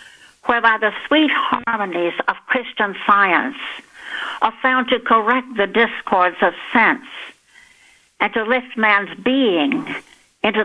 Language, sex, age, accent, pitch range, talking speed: English, female, 60-79, American, 205-270 Hz, 120 wpm